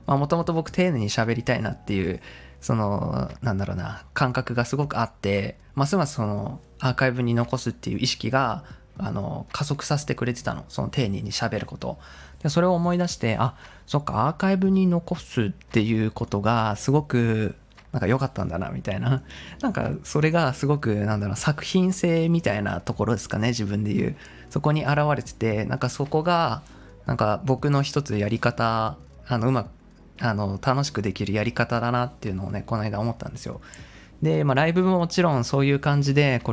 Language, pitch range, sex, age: Japanese, 110-150 Hz, male, 20-39